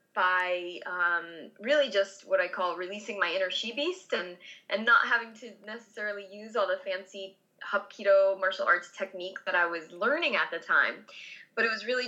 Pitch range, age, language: 185-225 Hz, 20-39, English